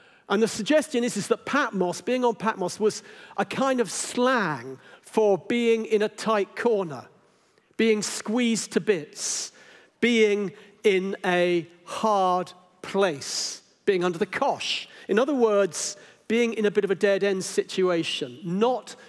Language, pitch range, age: English, 170-220 Hz, 50-69